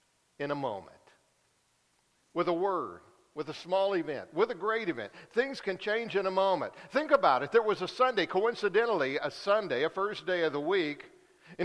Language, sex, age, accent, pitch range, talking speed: English, male, 50-69, American, 135-195 Hz, 190 wpm